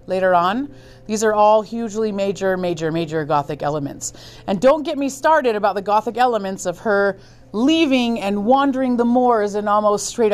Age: 30-49